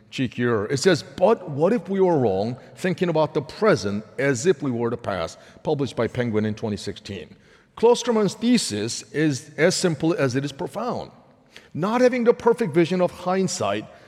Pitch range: 130-180 Hz